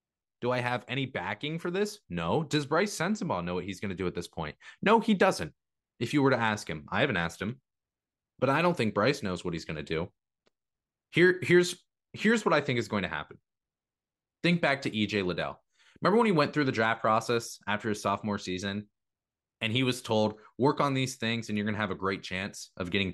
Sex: male